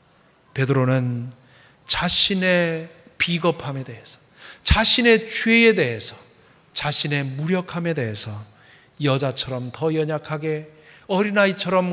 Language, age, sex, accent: Korean, 40-59, male, native